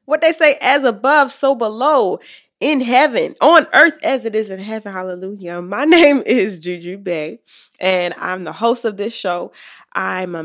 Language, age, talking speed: English, 20-39, 180 wpm